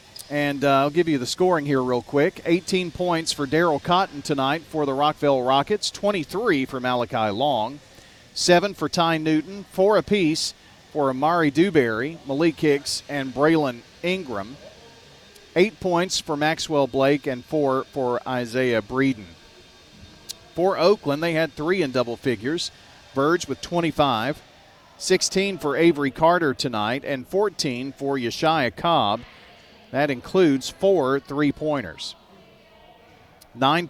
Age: 40-59